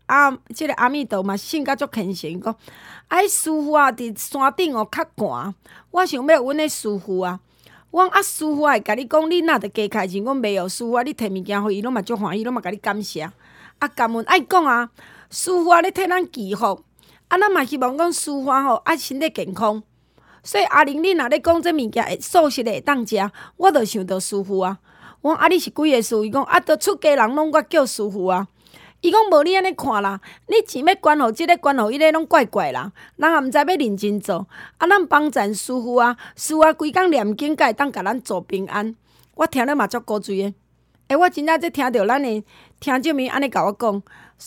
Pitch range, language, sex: 215-315 Hz, Chinese, female